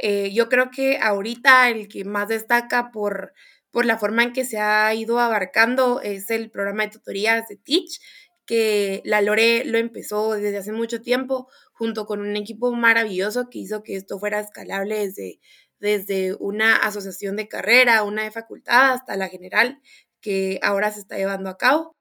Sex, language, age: female, Spanish, 20-39